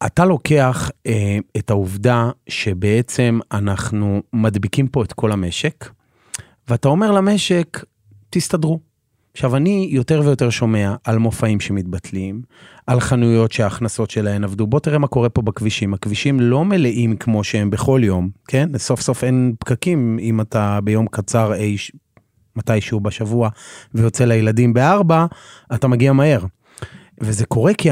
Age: 30-49